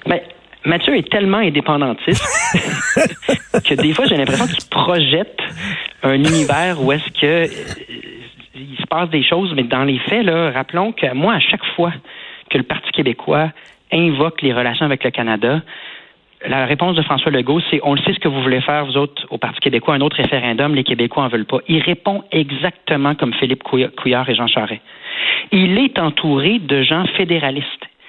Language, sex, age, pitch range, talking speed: French, male, 40-59, 135-175 Hz, 185 wpm